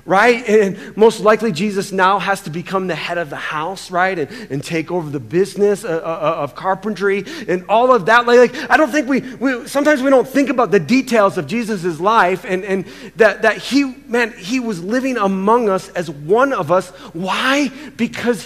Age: 30-49